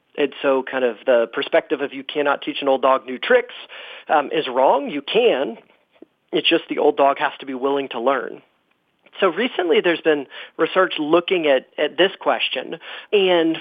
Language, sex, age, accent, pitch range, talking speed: English, male, 40-59, American, 140-175 Hz, 185 wpm